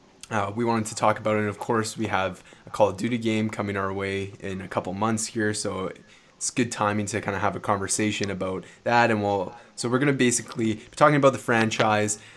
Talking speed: 240 wpm